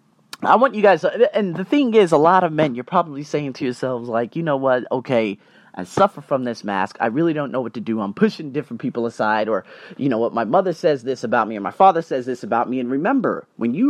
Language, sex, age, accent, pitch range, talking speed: English, male, 30-49, American, 125-180 Hz, 255 wpm